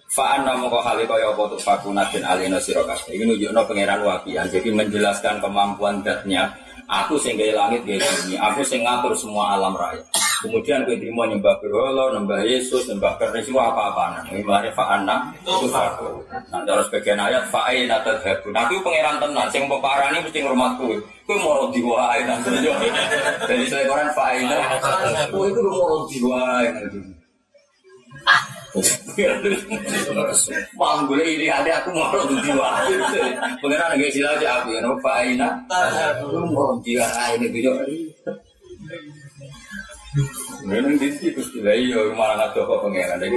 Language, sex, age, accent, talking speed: Indonesian, male, 30-49, native, 45 wpm